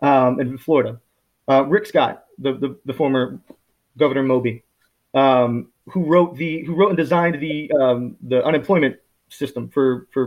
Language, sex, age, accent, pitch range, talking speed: English, male, 30-49, American, 135-160 Hz, 160 wpm